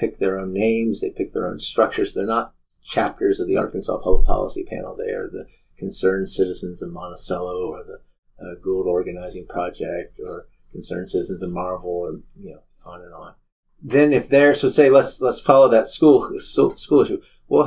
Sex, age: male, 30-49